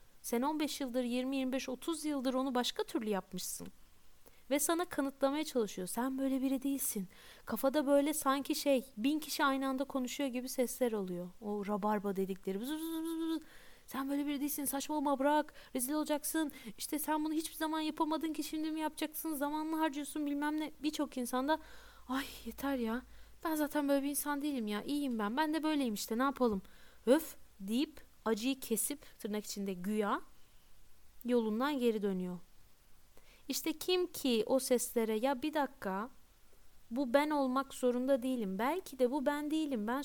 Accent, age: native, 30-49